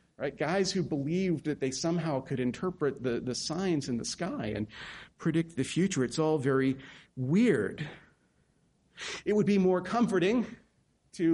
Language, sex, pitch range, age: English, male, 135-170 Hz, 40-59